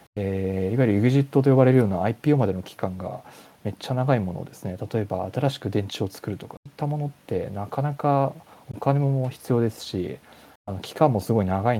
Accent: native